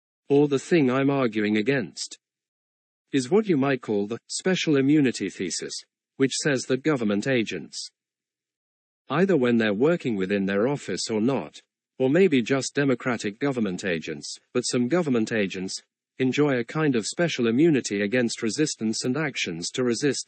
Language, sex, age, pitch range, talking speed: English, male, 40-59, 110-135 Hz, 150 wpm